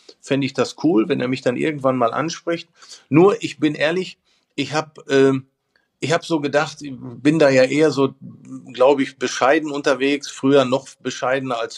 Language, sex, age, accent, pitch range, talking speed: German, male, 50-69, German, 120-150 Hz, 185 wpm